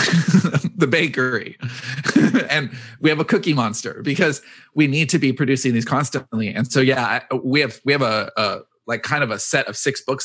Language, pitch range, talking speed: English, 115-150 Hz, 195 wpm